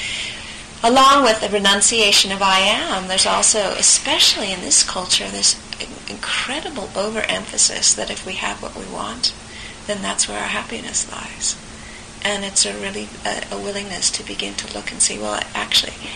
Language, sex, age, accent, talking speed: English, female, 40-59, American, 165 wpm